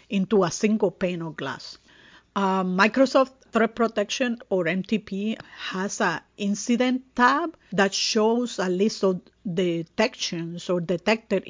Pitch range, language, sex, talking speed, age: 175-210 Hz, English, female, 125 wpm, 50-69